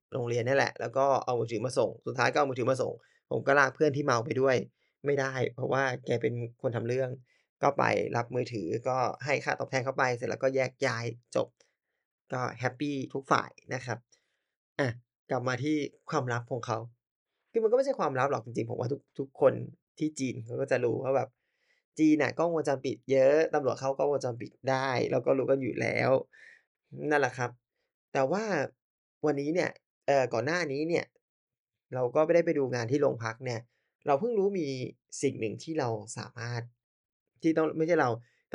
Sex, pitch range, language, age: male, 120-155 Hz, Thai, 20-39